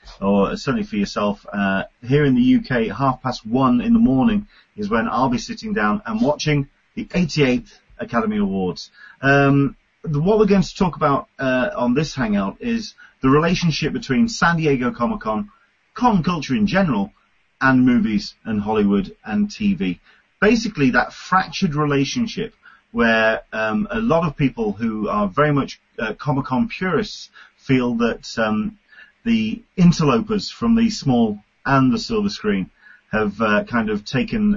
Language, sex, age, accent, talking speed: English, male, 30-49, British, 155 wpm